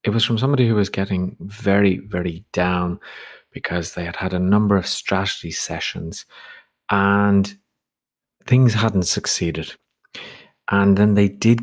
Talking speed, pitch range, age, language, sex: 140 wpm, 90-115 Hz, 40-59, English, male